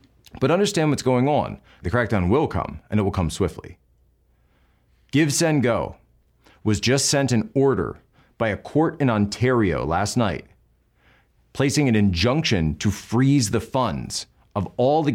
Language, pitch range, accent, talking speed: English, 95-120 Hz, American, 155 wpm